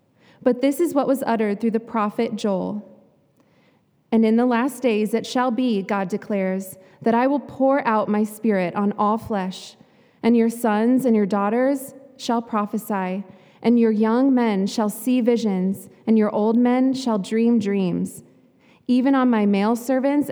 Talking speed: 170 wpm